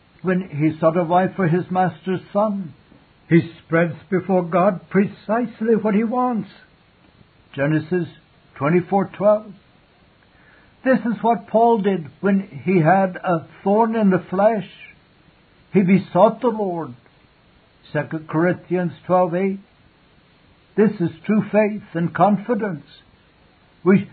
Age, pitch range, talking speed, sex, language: 60-79, 170-205 Hz, 115 wpm, male, English